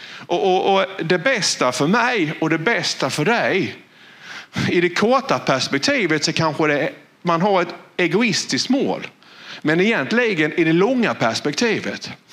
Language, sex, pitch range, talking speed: Swedish, male, 145-190 Hz, 140 wpm